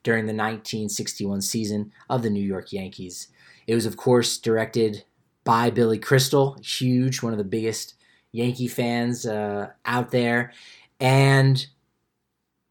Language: English